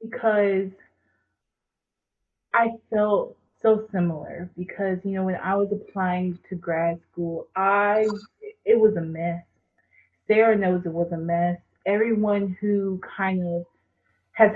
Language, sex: English, female